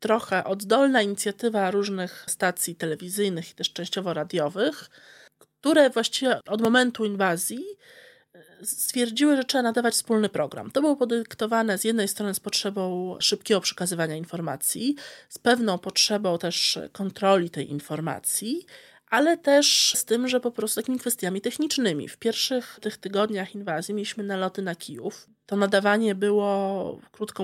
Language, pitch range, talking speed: Polish, 180-235 Hz, 135 wpm